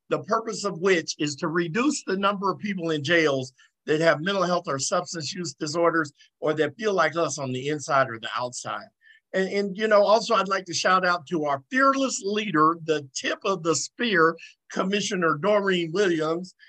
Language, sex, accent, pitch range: English, male, American, 160-210 Hz